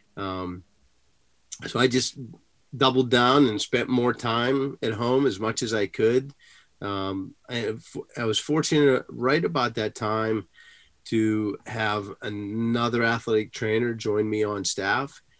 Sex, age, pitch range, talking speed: male, 30-49, 100-120 Hz, 135 wpm